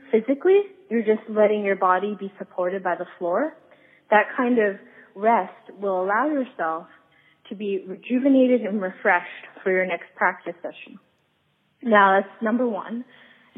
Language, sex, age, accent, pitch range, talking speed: English, female, 20-39, American, 190-235 Hz, 140 wpm